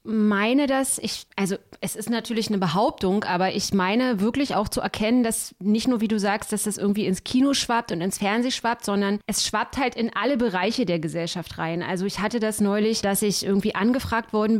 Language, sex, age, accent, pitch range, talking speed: German, female, 30-49, German, 200-245 Hz, 215 wpm